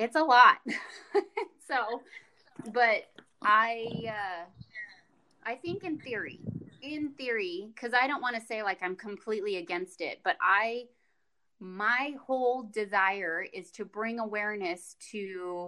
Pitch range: 195-260 Hz